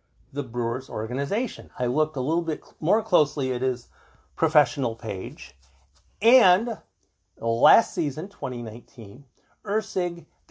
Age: 50-69